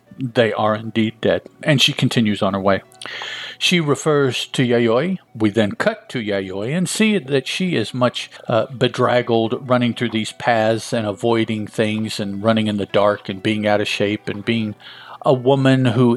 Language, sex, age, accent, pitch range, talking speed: English, male, 50-69, American, 105-130 Hz, 180 wpm